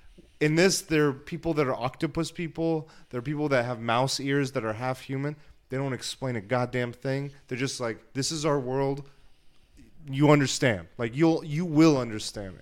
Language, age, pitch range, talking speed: English, 30-49, 110-140 Hz, 190 wpm